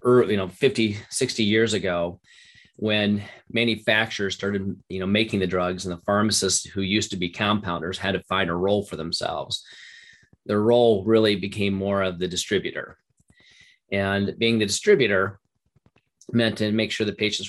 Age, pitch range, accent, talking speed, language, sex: 30-49, 95-110 Hz, American, 160 wpm, English, male